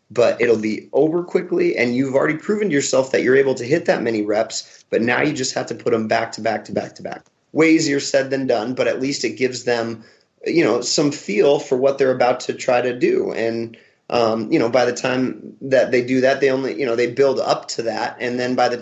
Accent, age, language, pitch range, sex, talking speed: American, 30-49, English, 115-130 Hz, male, 260 wpm